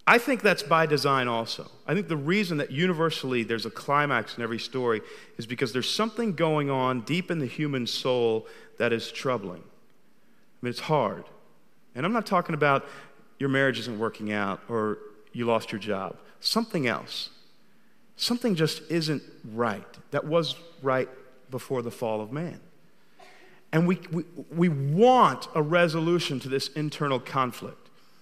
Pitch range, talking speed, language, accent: 120-175 Hz, 160 wpm, English, American